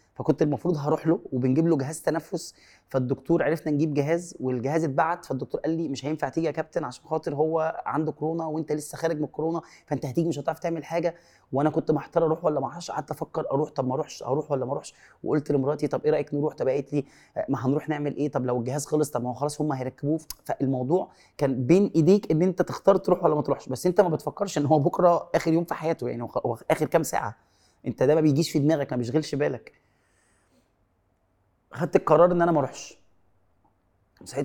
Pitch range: 130-160 Hz